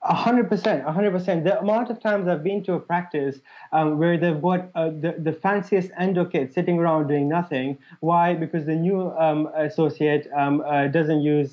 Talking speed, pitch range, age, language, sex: 205 wpm, 145-170 Hz, 20-39, English, male